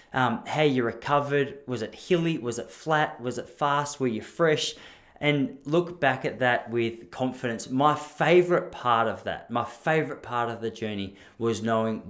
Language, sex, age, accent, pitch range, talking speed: English, male, 20-39, Australian, 110-145 Hz, 180 wpm